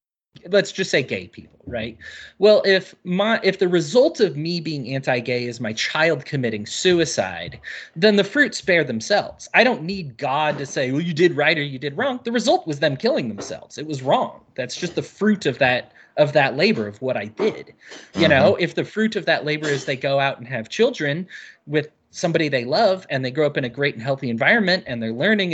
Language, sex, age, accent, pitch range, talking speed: English, male, 20-39, American, 135-200 Hz, 220 wpm